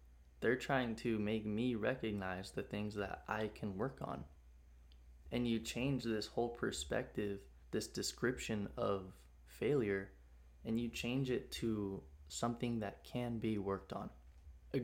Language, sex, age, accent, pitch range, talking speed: English, male, 20-39, American, 70-115 Hz, 140 wpm